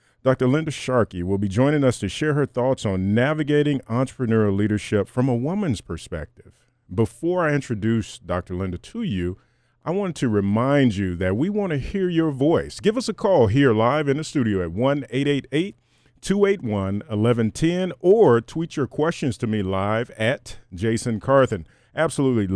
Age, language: 40-59, English